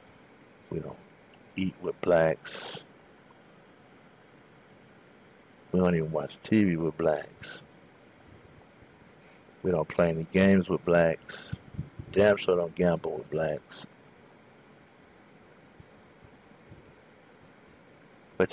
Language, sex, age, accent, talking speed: English, male, 60-79, American, 85 wpm